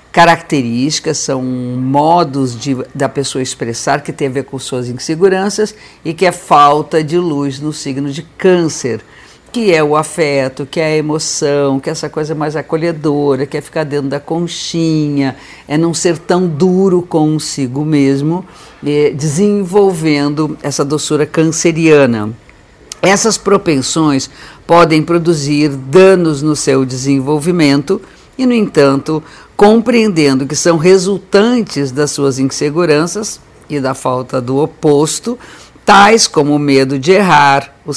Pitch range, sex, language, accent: 140-170 Hz, female, Portuguese, Brazilian